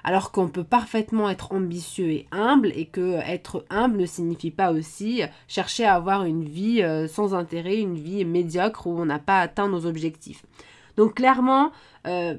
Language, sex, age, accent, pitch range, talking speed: French, female, 20-39, French, 170-220 Hz, 175 wpm